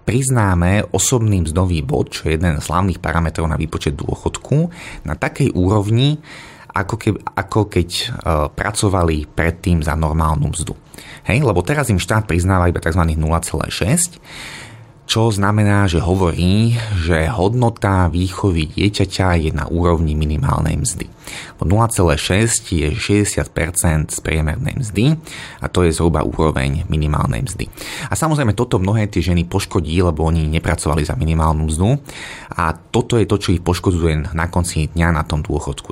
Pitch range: 80-105 Hz